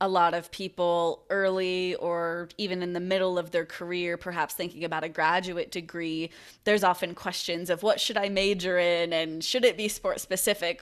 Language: English